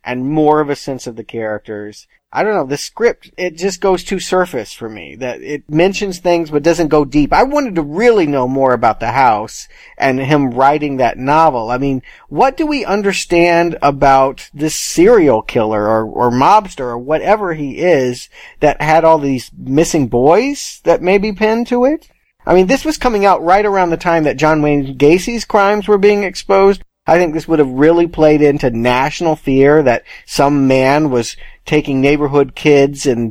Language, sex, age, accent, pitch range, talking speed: English, male, 40-59, American, 130-170 Hz, 195 wpm